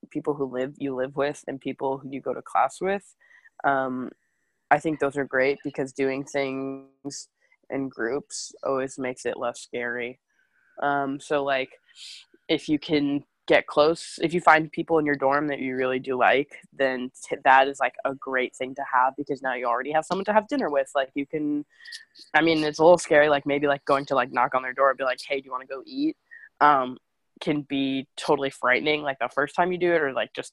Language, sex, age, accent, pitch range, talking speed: English, female, 20-39, American, 135-170 Hz, 220 wpm